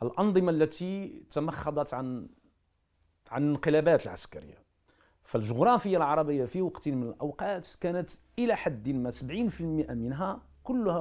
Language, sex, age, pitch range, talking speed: Arabic, male, 50-69, 110-180 Hz, 110 wpm